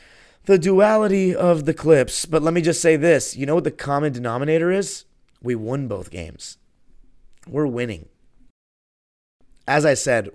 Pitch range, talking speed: 115-150 Hz, 155 wpm